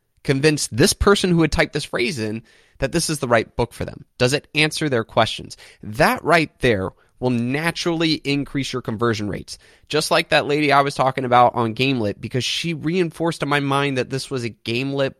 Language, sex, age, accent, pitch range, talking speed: English, male, 20-39, American, 105-140 Hz, 205 wpm